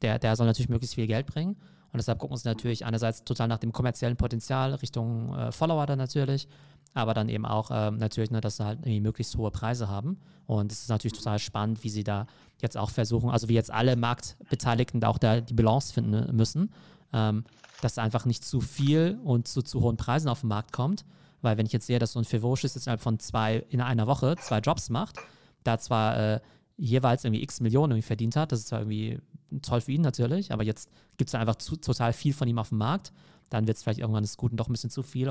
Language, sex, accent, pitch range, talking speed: German, male, German, 110-130 Hz, 240 wpm